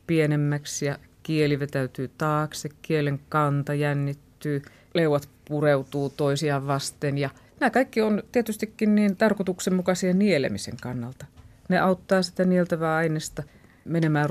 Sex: female